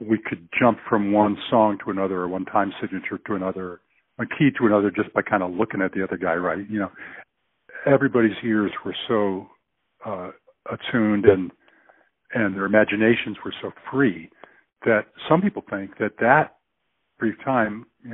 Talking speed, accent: 170 wpm, American